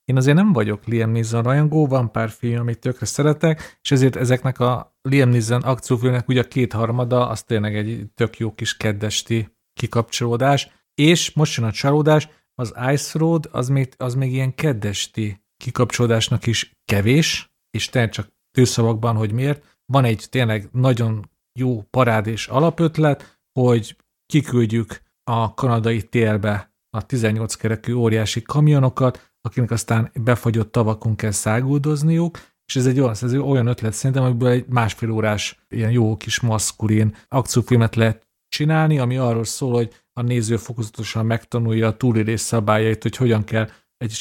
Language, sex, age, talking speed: Hungarian, male, 40-59, 150 wpm